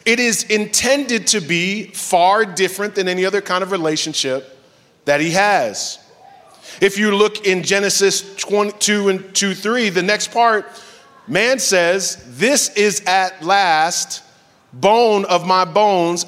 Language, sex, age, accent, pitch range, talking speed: English, male, 30-49, American, 170-220 Hz, 135 wpm